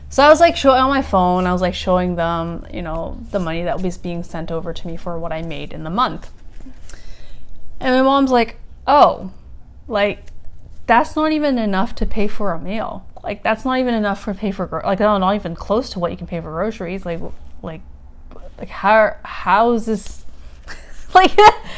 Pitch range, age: 170-245 Hz, 20-39